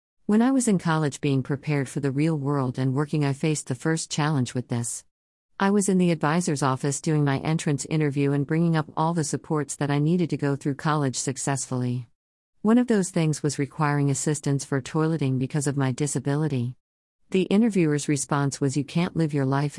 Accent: American